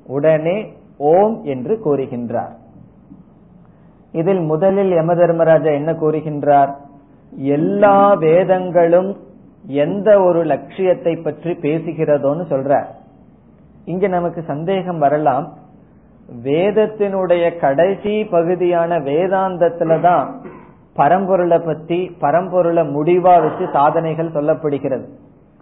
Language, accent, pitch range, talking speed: Tamil, native, 155-185 Hz, 75 wpm